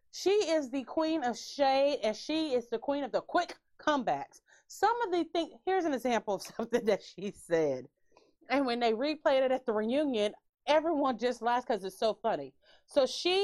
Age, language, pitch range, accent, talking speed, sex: 30-49, English, 210-325 Hz, American, 195 wpm, female